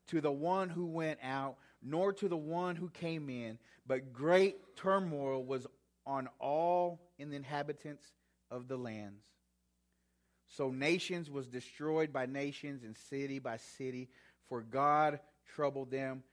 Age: 30-49